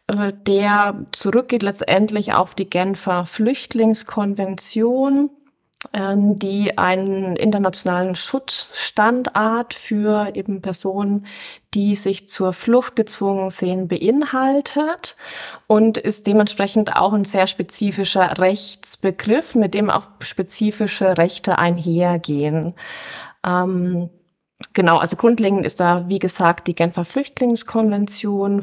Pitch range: 185-220 Hz